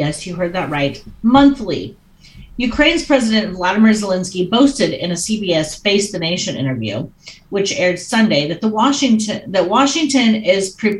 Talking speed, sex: 145 wpm, female